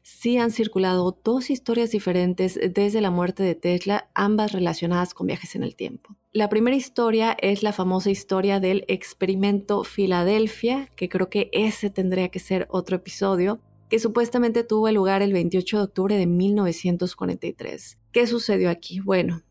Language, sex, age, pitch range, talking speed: Spanish, female, 30-49, 185-210 Hz, 155 wpm